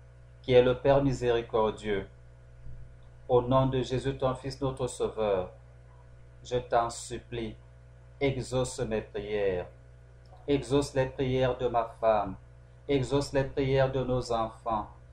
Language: French